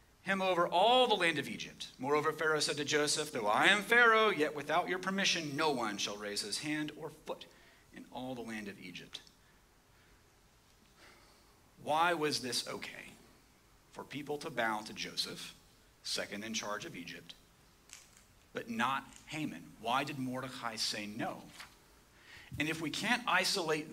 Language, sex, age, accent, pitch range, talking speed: English, male, 40-59, American, 125-175 Hz, 155 wpm